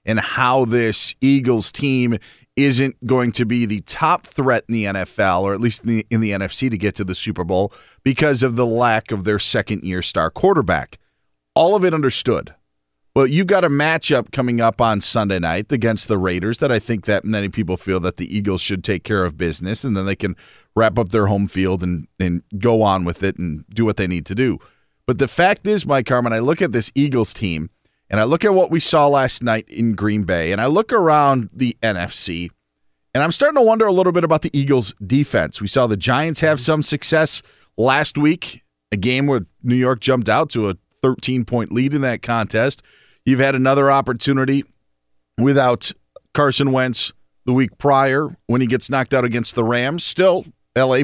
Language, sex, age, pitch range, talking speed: English, male, 40-59, 105-135 Hz, 210 wpm